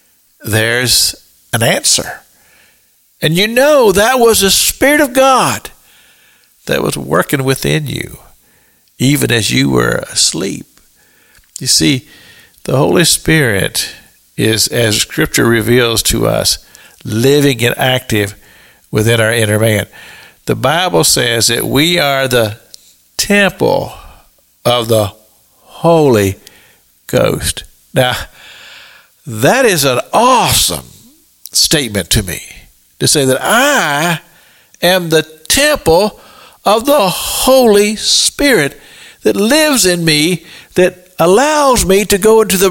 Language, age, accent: English, 60-79, American